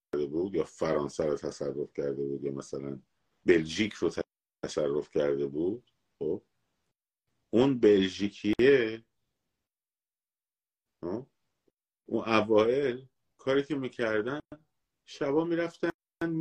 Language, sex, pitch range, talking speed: Persian, male, 85-125 Hz, 95 wpm